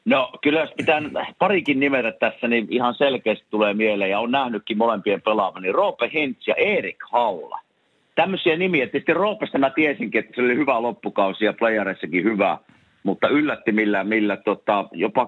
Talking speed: 165 wpm